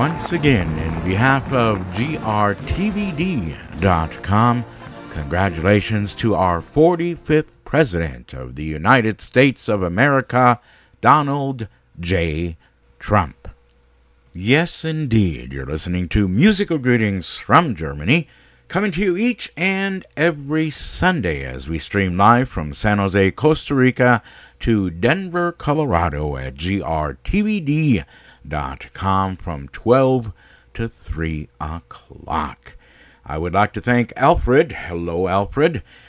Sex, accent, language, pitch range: male, American, English, 85-135 Hz